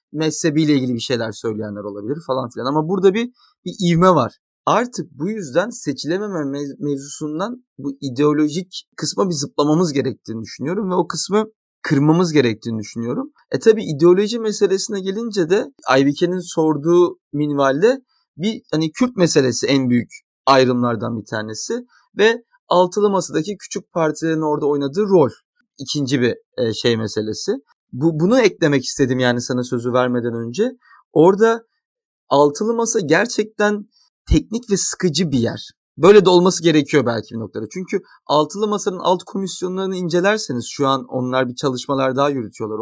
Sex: male